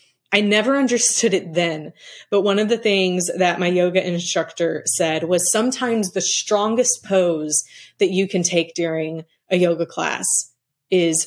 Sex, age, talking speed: female, 20-39, 155 wpm